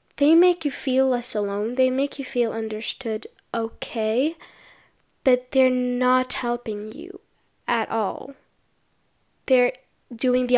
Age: 10-29